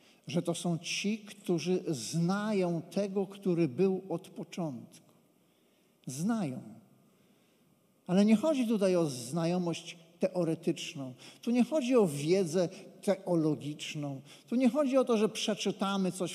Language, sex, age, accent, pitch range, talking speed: Polish, male, 50-69, native, 195-240 Hz, 120 wpm